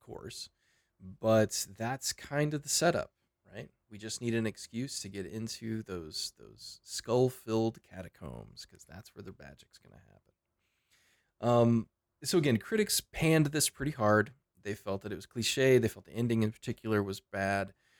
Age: 20-39